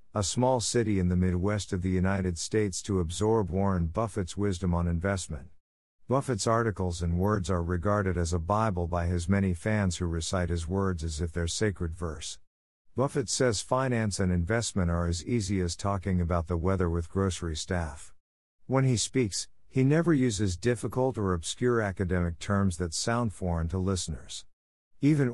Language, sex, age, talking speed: English, male, 50-69, 170 wpm